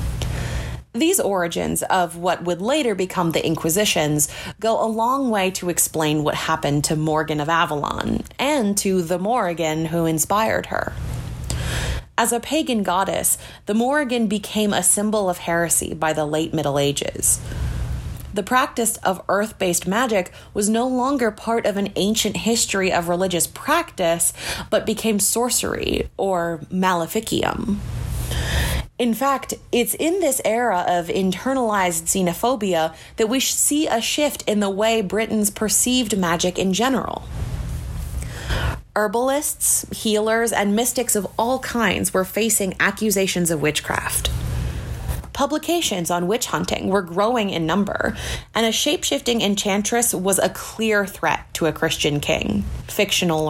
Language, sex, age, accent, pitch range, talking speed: English, female, 30-49, American, 170-225 Hz, 135 wpm